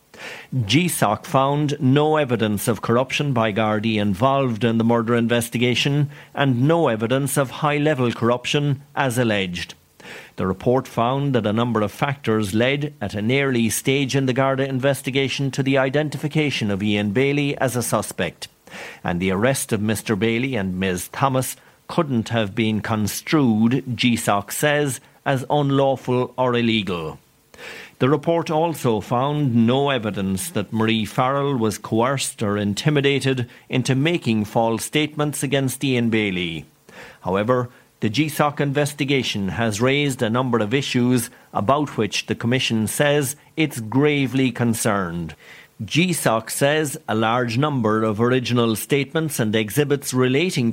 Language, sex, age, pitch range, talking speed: English, male, 50-69, 110-140 Hz, 135 wpm